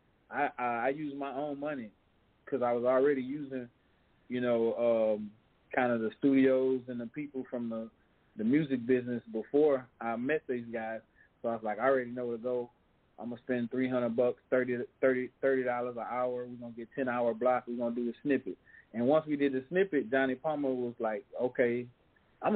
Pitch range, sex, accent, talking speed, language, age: 120-150 Hz, male, American, 205 wpm, English, 20-39